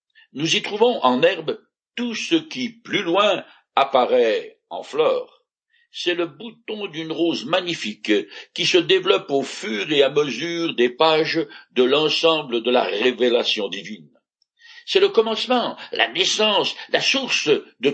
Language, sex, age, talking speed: French, male, 60-79, 145 wpm